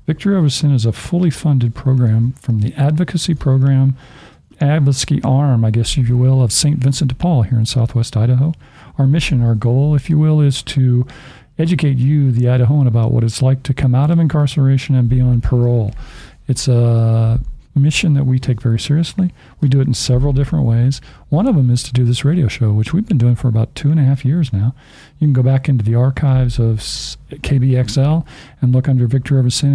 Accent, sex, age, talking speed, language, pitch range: American, male, 50-69, 210 wpm, English, 125-145 Hz